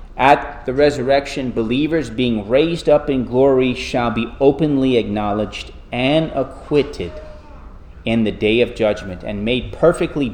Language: English